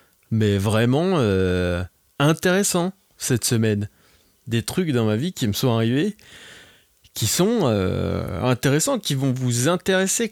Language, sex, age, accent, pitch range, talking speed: French, male, 20-39, French, 105-140 Hz, 135 wpm